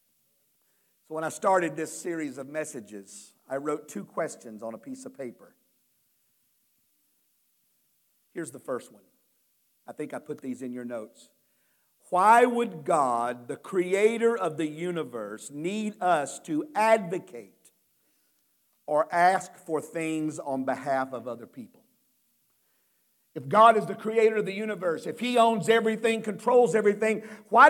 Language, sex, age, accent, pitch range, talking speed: English, male, 50-69, American, 155-230 Hz, 140 wpm